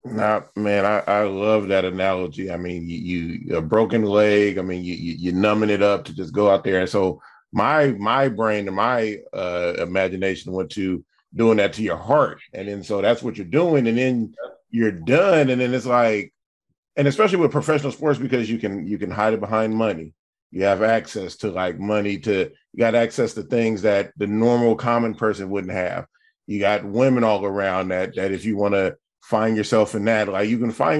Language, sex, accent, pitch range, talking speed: English, male, American, 100-115 Hz, 210 wpm